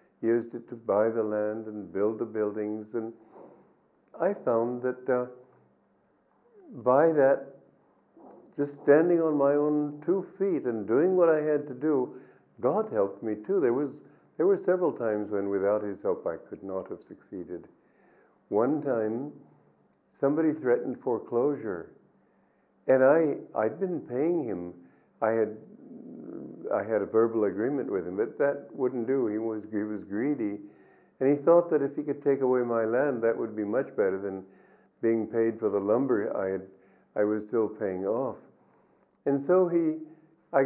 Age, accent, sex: 50-69, American, male